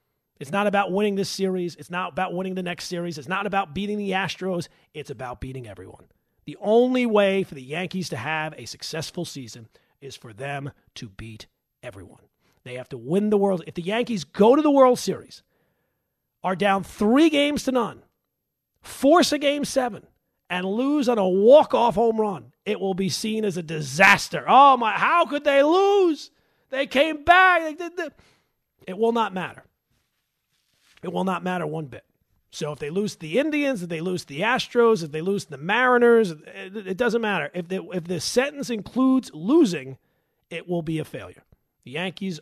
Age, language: 40-59, English